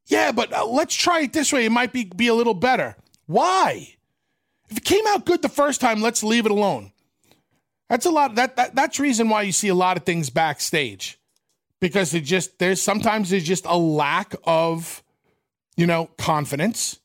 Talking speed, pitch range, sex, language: 195 wpm, 165-225 Hz, male, English